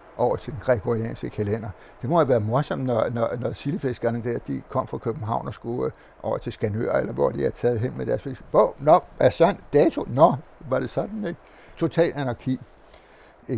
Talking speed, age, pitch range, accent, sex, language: 215 wpm, 60-79, 115-135 Hz, native, male, Danish